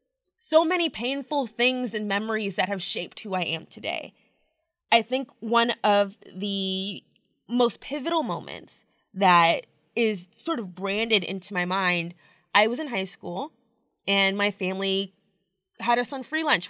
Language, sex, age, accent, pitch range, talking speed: English, female, 20-39, American, 190-235 Hz, 150 wpm